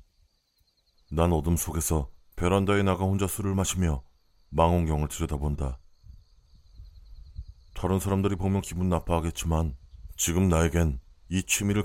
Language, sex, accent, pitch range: Korean, male, native, 75-95 Hz